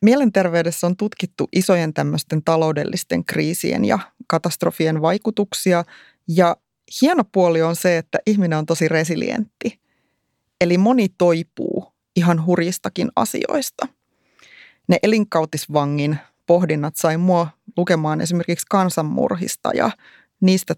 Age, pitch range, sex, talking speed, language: 30-49, 155-190 Hz, female, 105 wpm, Finnish